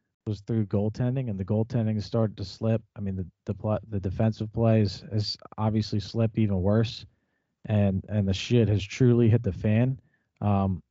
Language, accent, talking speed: English, American, 175 wpm